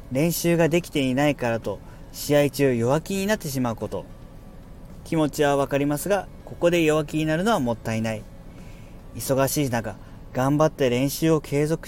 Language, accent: Japanese, native